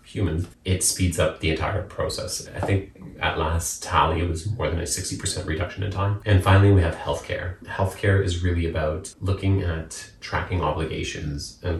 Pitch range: 85-100 Hz